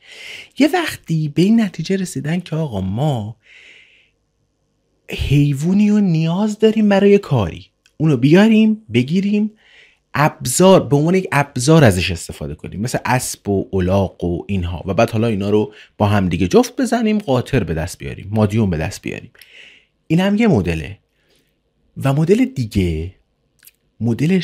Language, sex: Persian, male